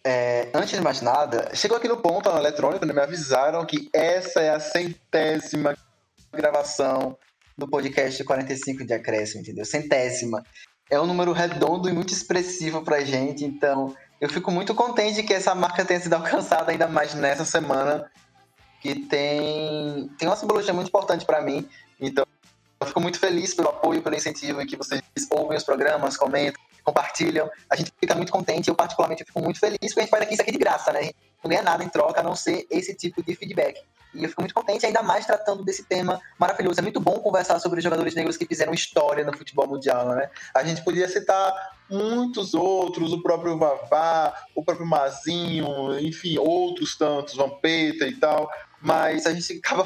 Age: 20-39